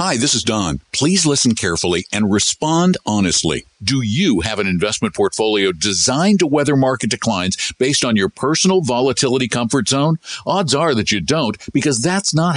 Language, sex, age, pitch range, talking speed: English, male, 60-79, 110-160 Hz, 170 wpm